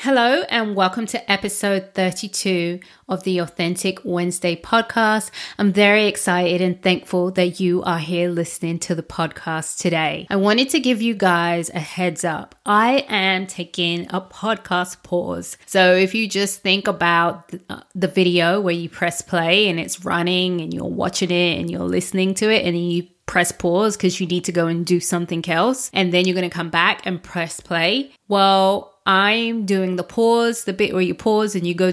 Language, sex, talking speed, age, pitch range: English, female, 190 wpm, 20-39, 175-205 Hz